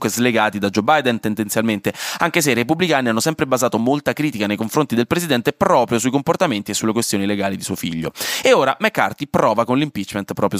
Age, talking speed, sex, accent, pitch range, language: 20-39, 200 wpm, male, native, 110-160 Hz, Italian